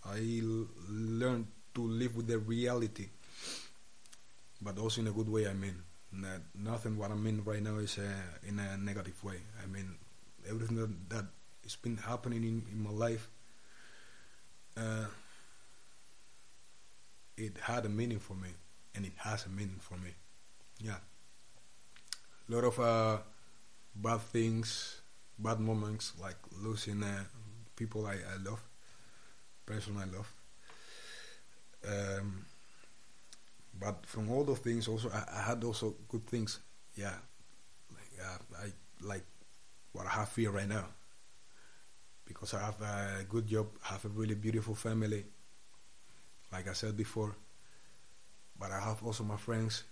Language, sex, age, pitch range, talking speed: English, male, 30-49, 100-115 Hz, 140 wpm